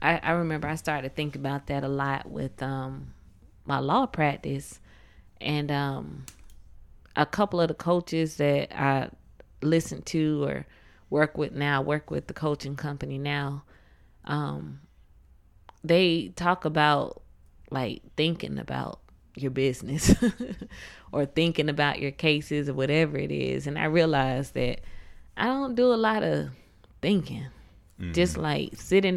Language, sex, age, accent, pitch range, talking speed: English, female, 20-39, American, 125-160 Hz, 140 wpm